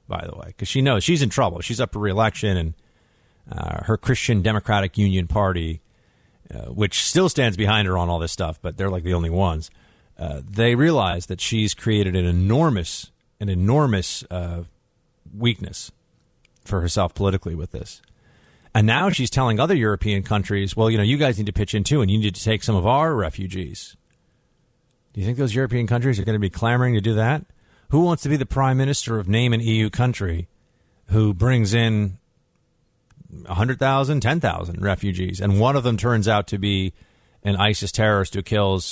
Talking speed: 195 wpm